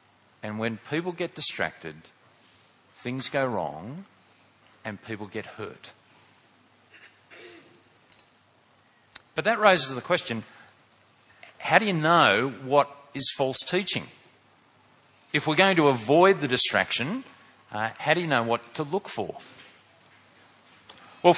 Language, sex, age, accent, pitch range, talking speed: English, male, 40-59, Australian, 120-160 Hz, 120 wpm